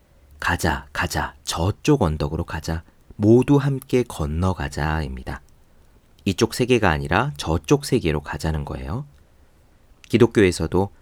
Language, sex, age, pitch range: Korean, male, 40-59, 80-115 Hz